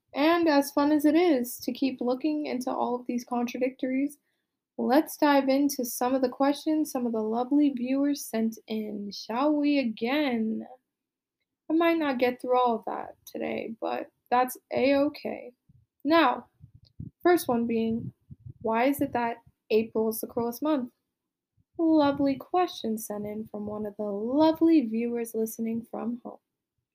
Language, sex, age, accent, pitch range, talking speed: English, female, 20-39, American, 230-290 Hz, 155 wpm